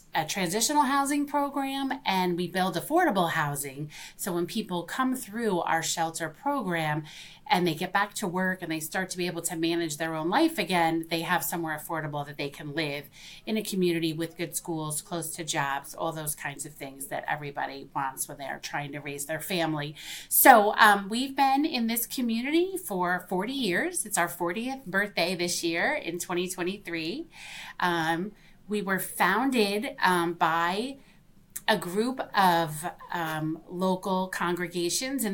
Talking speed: 170 wpm